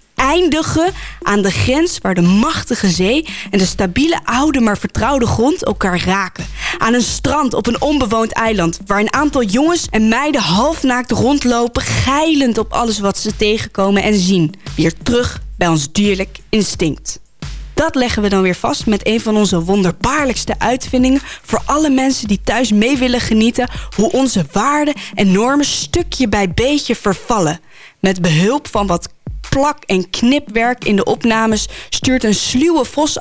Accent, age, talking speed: Dutch, 20-39, 160 wpm